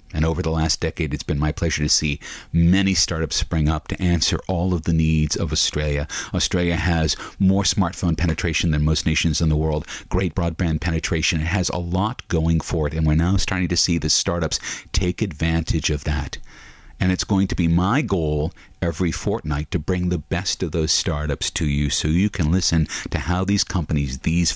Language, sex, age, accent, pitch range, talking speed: English, male, 40-59, American, 80-95 Hz, 205 wpm